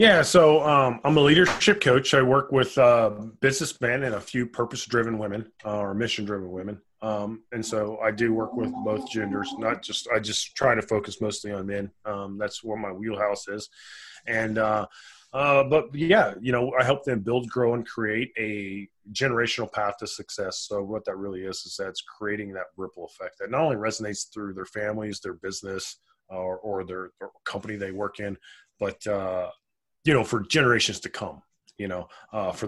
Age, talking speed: 20-39, 200 wpm